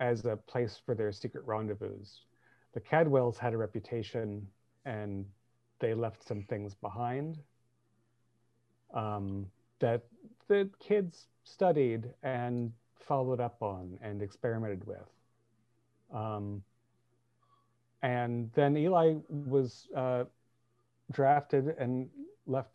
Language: English